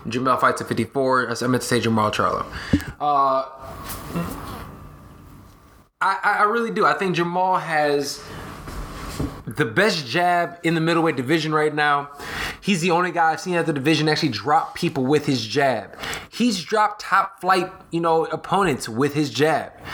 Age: 20-39